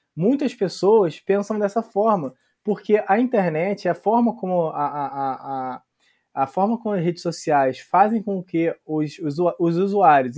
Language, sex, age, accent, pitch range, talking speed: Portuguese, male, 20-39, Brazilian, 160-210 Hz, 150 wpm